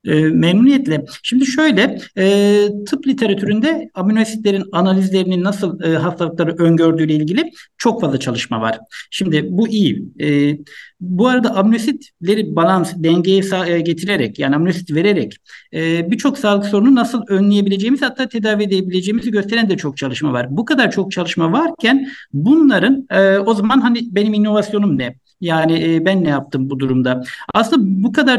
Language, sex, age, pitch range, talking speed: Turkish, male, 60-79, 170-230 Hz, 130 wpm